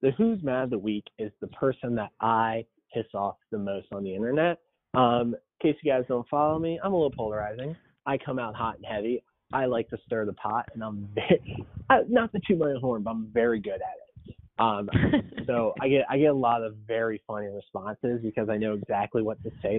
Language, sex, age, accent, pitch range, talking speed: English, male, 30-49, American, 105-135 Hz, 225 wpm